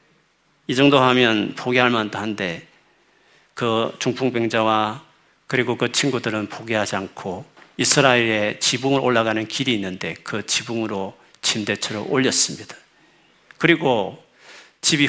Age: 40-59